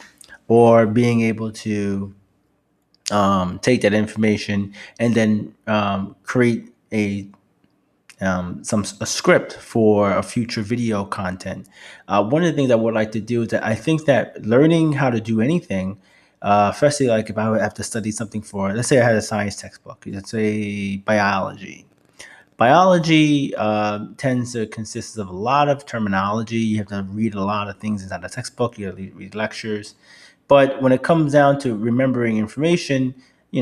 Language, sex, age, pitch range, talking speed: English, male, 30-49, 105-125 Hz, 175 wpm